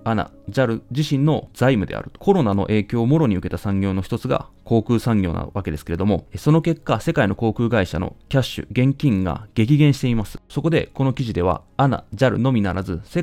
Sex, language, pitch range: male, Japanese, 100-135 Hz